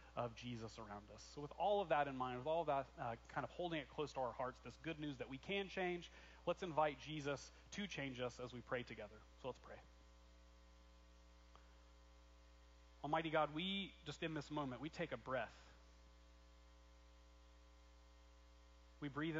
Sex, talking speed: male, 175 wpm